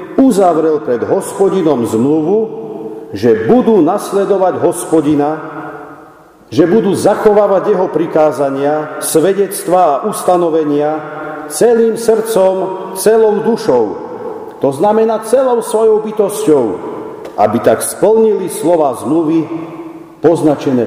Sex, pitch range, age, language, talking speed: male, 155-210 Hz, 50-69, Slovak, 85 wpm